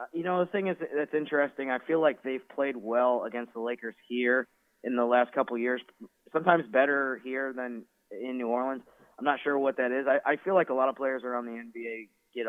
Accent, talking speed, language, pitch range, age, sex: American, 230 wpm, English, 110-130 Hz, 20-39, male